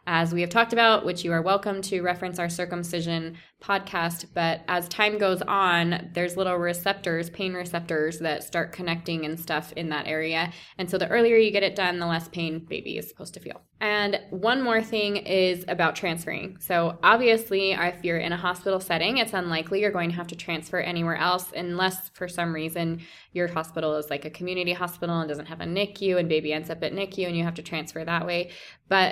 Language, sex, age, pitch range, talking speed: English, female, 20-39, 170-195 Hz, 210 wpm